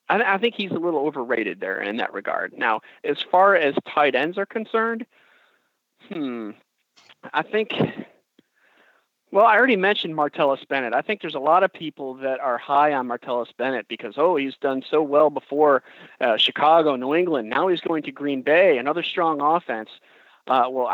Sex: male